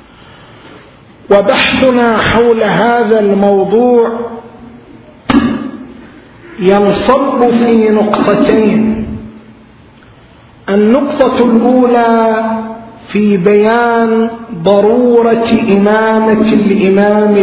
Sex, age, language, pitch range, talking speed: male, 50-69, Arabic, 200-235 Hz, 50 wpm